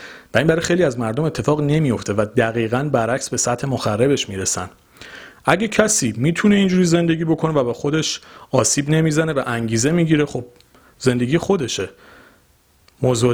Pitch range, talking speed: 115-155 Hz, 160 wpm